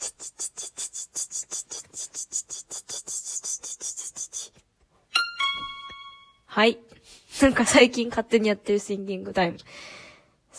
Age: 20-39